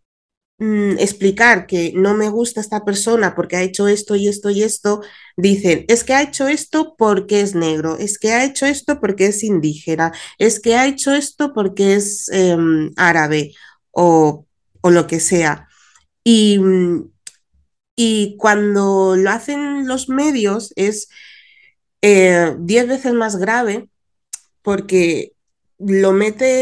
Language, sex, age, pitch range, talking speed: Spanish, female, 30-49, 180-230 Hz, 140 wpm